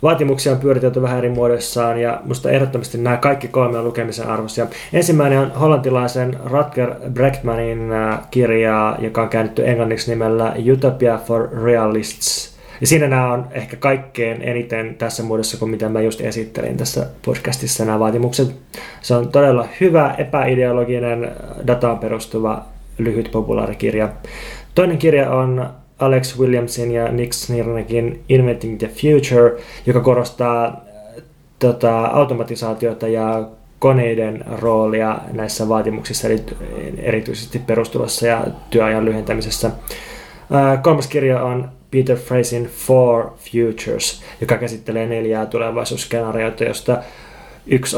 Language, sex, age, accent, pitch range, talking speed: Finnish, male, 20-39, native, 115-130 Hz, 125 wpm